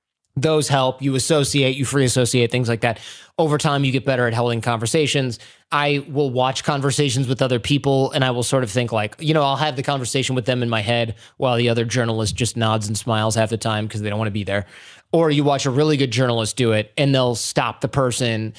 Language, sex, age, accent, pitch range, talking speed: English, male, 20-39, American, 120-145 Hz, 240 wpm